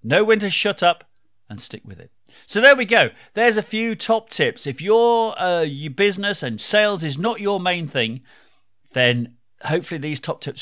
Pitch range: 120-165 Hz